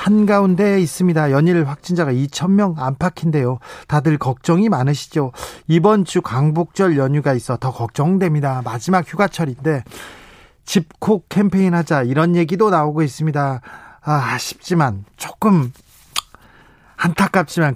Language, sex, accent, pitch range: Korean, male, native, 140-185 Hz